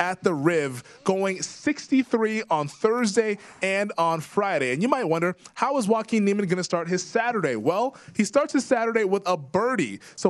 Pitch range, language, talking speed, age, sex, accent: 145-190 Hz, English, 185 wpm, 20-39, male, American